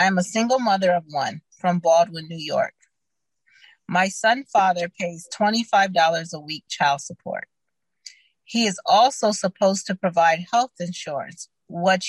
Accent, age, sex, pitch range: American, 30-49, female, 175-215 Hz